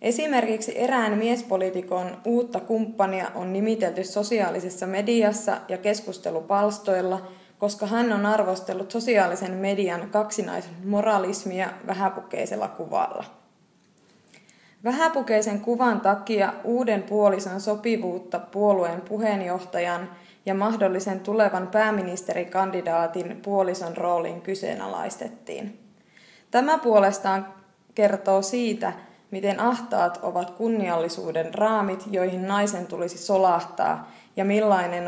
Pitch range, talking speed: 185-215 Hz, 85 wpm